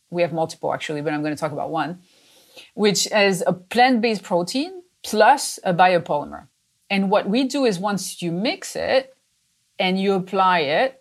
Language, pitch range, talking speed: English, 170-210 Hz, 175 wpm